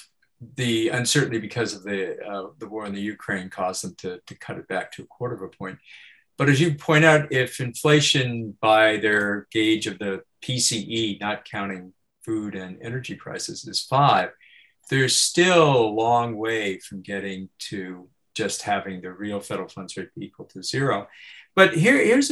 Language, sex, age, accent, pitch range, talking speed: English, male, 50-69, American, 100-135 Hz, 175 wpm